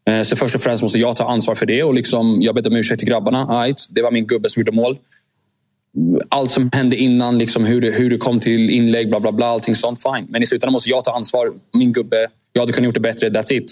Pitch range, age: 110-125 Hz, 20-39